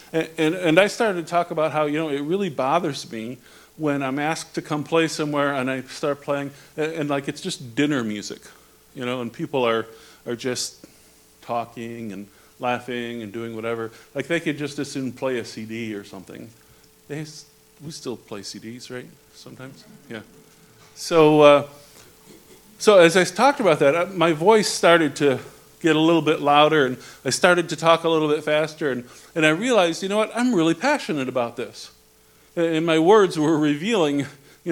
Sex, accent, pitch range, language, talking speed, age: male, American, 130-170 Hz, English, 190 wpm, 50-69